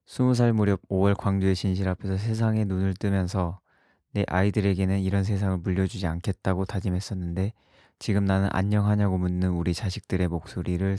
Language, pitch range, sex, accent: Korean, 95-105 Hz, male, native